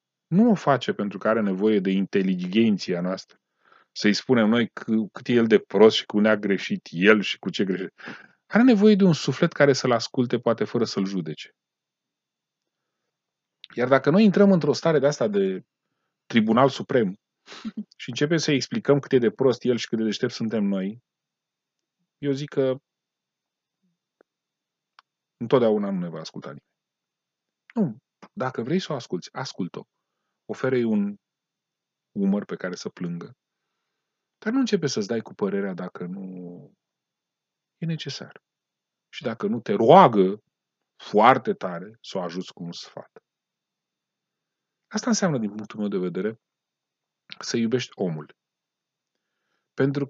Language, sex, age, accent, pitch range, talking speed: Romanian, male, 30-49, native, 105-175 Hz, 150 wpm